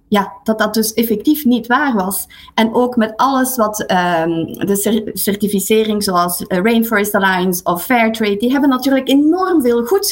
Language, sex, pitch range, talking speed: Dutch, female, 215-265 Hz, 155 wpm